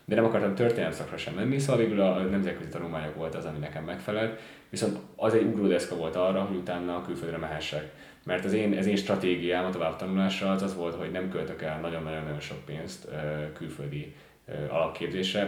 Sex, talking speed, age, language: male, 185 wpm, 20-39, Hungarian